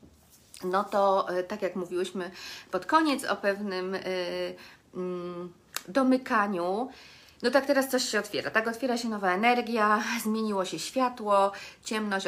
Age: 40-59